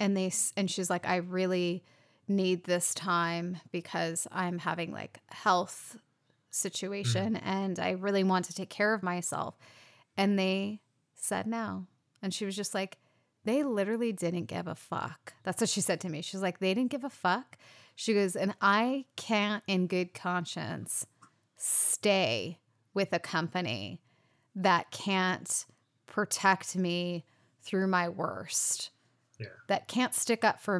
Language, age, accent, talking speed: English, 30-49, American, 150 wpm